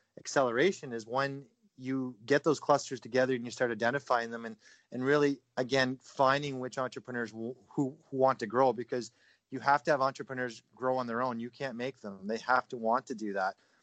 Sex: male